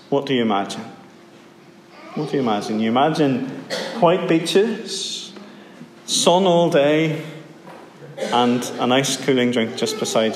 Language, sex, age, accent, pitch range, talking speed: English, male, 40-59, British, 125-195 Hz, 125 wpm